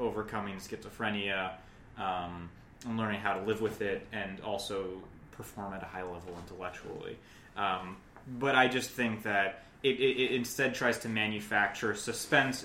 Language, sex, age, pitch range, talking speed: English, male, 20-39, 100-120 Hz, 150 wpm